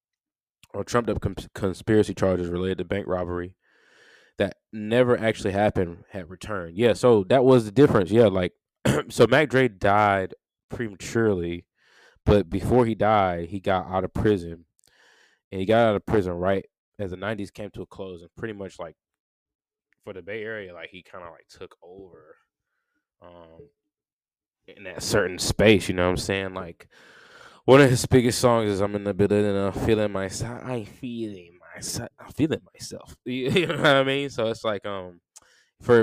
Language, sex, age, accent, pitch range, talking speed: English, male, 20-39, American, 90-115 Hz, 180 wpm